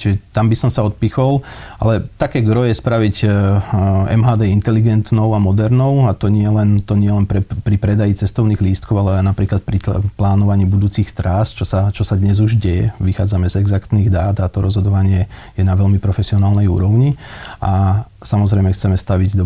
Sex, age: male, 40-59